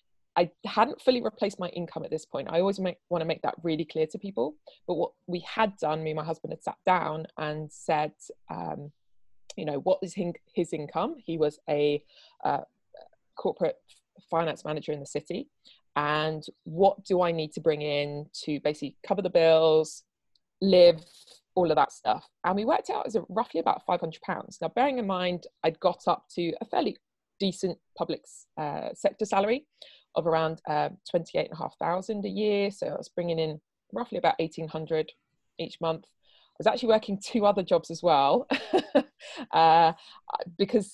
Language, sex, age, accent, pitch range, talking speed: English, female, 20-39, British, 155-195 Hz, 180 wpm